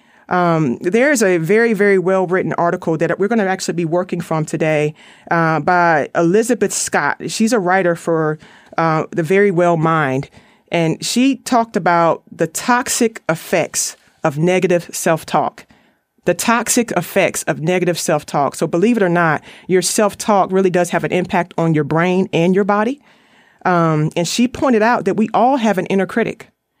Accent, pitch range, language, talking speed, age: American, 175-215 Hz, English, 170 wpm, 30-49